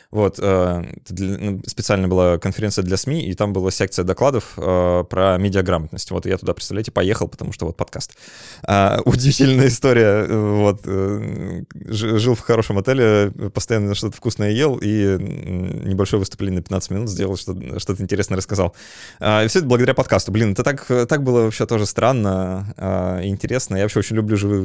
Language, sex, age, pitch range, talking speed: Russian, male, 20-39, 95-115 Hz, 155 wpm